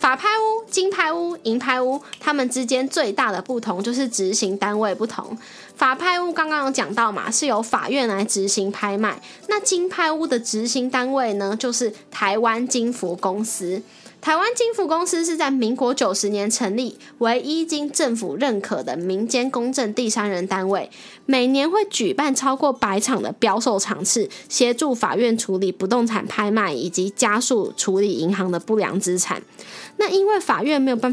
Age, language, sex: 10-29, Chinese, female